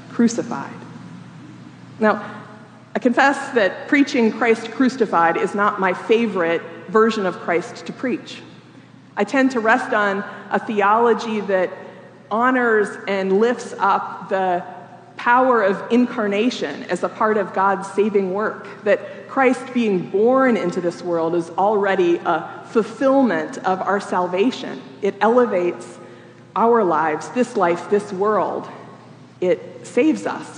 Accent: American